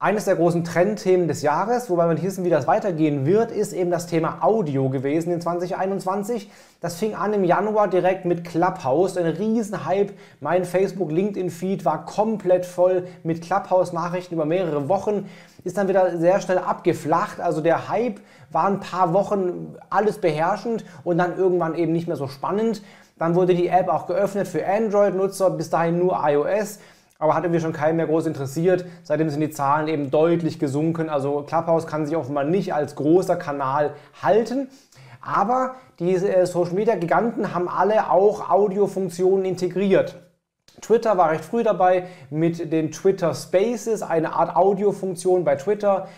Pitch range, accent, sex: 160-190 Hz, German, male